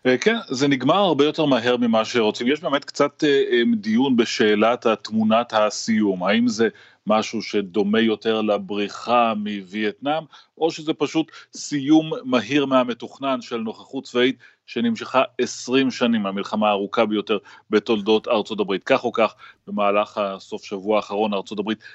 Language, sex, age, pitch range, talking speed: Hebrew, male, 30-49, 105-145 Hz, 135 wpm